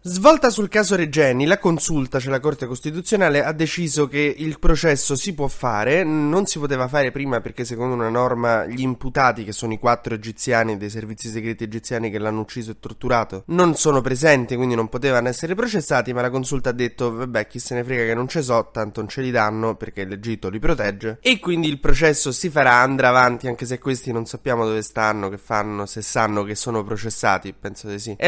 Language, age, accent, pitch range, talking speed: Italian, 20-39, native, 110-145 Hz, 210 wpm